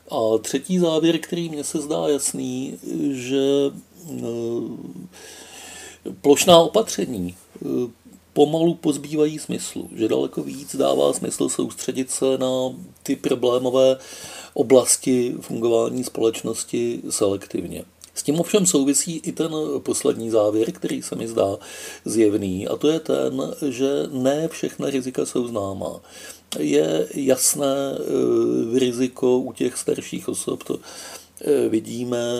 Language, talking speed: Czech, 110 wpm